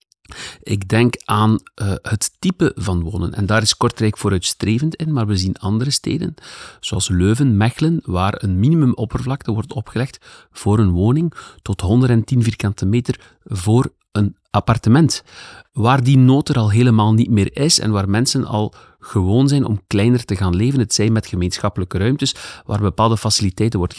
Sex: male